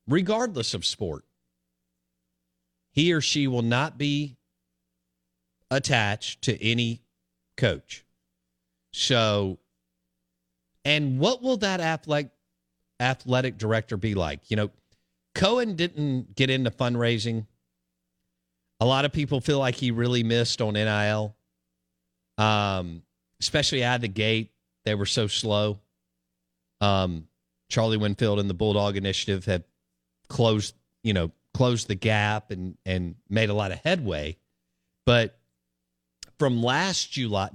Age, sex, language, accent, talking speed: 50-69, male, English, American, 120 wpm